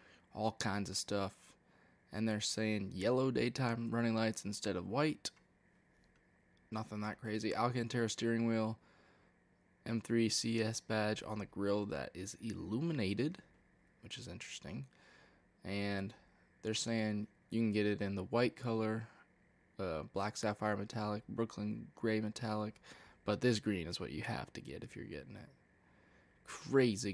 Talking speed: 140 wpm